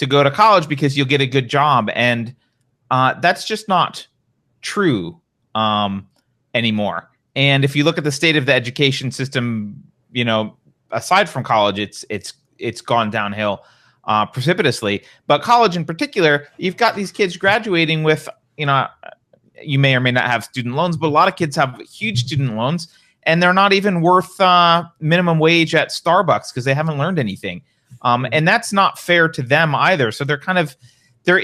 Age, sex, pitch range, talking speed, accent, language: 30-49, male, 120-165 Hz, 185 wpm, American, English